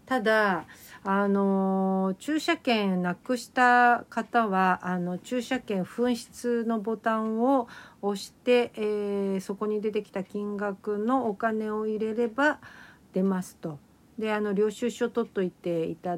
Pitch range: 185-240 Hz